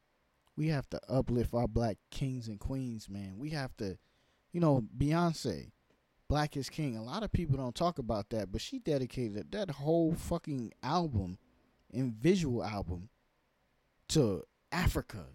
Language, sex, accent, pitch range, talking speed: English, male, American, 105-135 Hz, 155 wpm